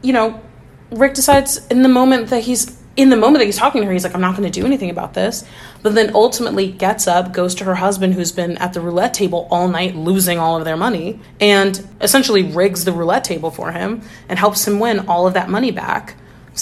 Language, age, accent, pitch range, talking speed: English, 30-49, American, 180-225 Hz, 240 wpm